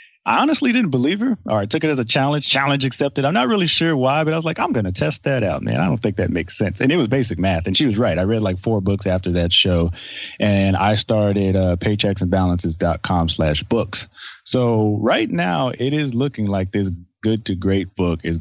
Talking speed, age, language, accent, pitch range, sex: 235 wpm, 30-49, English, American, 85-115 Hz, male